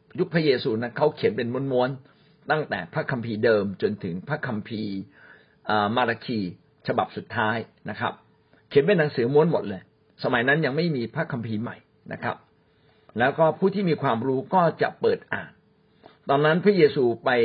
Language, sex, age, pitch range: Thai, male, 60-79, 115-160 Hz